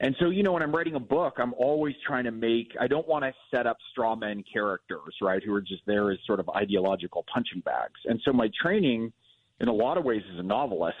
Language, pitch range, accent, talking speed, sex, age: English, 100-130 Hz, American, 250 wpm, male, 30-49